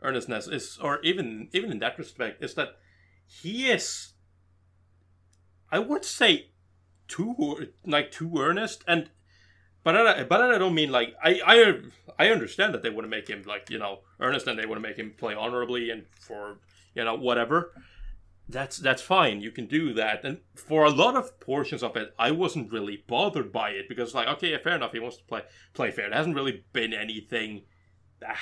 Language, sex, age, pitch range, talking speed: English, male, 30-49, 95-145 Hz, 195 wpm